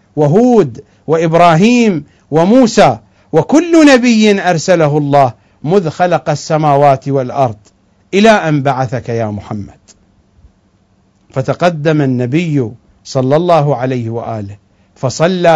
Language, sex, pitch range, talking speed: English, male, 115-180 Hz, 90 wpm